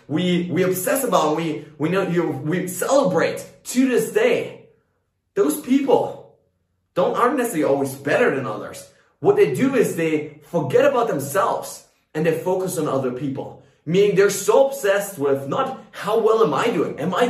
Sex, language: male, English